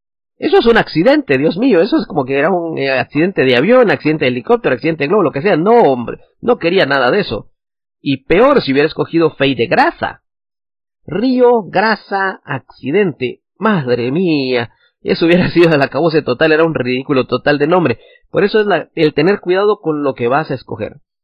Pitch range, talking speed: 125-180 Hz, 200 wpm